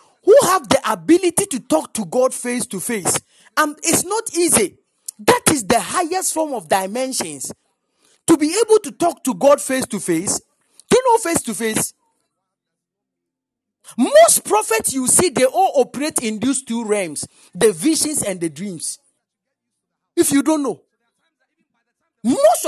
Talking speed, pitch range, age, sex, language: 155 wpm, 220-320 Hz, 40-59, male, English